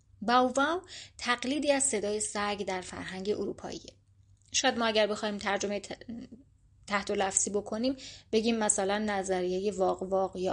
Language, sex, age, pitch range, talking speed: Persian, female, 30-49, 190-215 Hz, 130 wpm